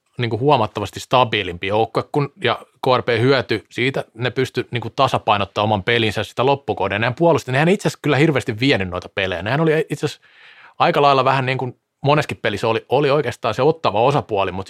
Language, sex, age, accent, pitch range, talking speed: Finnish, male, 30-49, native, 115-155 Hz, 170 wpm